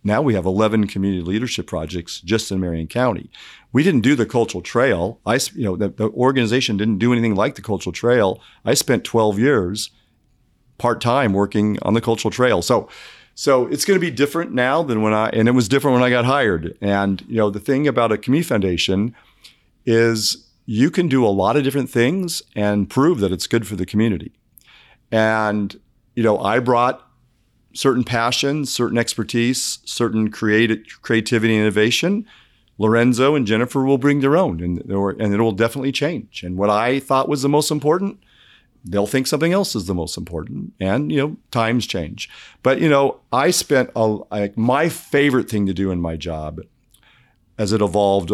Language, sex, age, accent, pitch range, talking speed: English, male, 40-59, American, 100-130 Hz, 190 wpm